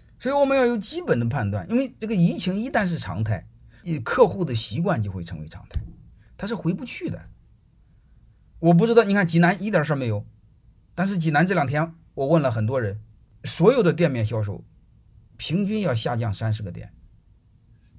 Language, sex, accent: Chinese, male, native